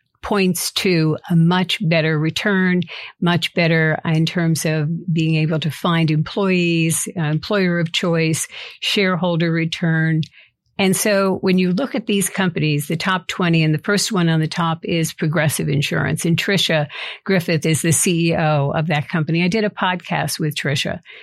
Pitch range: 160-185 Hz